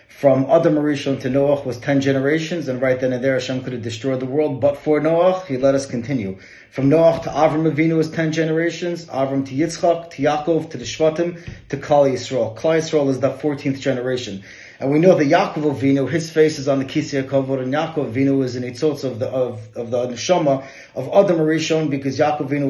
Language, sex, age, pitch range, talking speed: English, male, 30-49, 130-155 Hz, 210 wpm